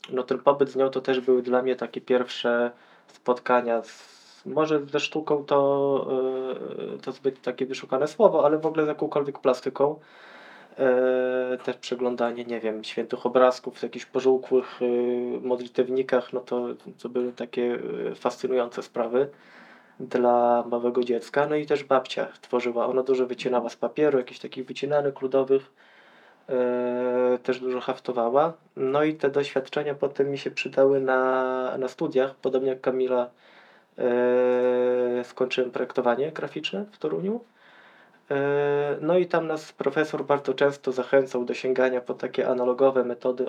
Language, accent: Polish, native